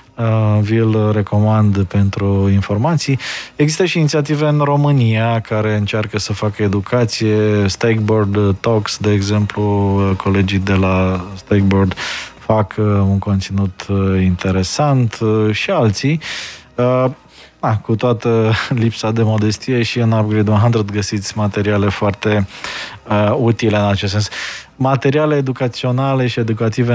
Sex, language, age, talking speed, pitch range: male, Romanian, 20-39, 105 wpm, 105-120 Hz